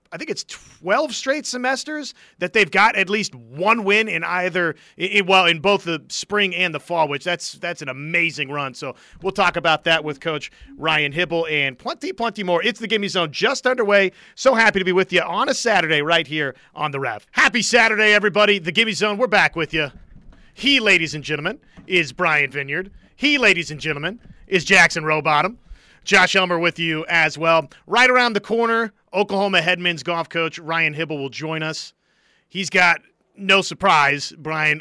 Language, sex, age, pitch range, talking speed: English, male, 30-49, 155-195 Hz, 190 wpm